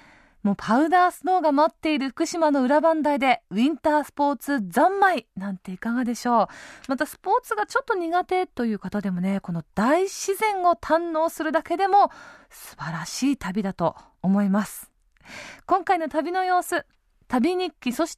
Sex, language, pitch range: female, Japanese, 225-335 Hz